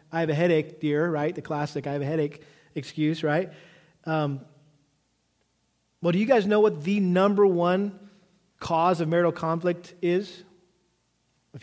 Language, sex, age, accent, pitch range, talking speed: English, male, 40-59, American, 155-190 Hz, 155 wpm